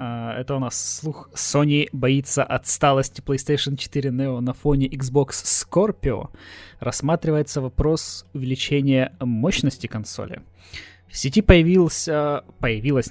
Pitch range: 125-150 Hz